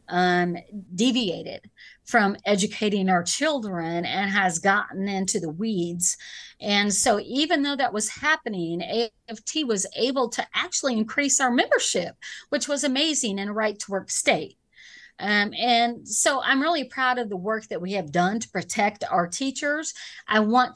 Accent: American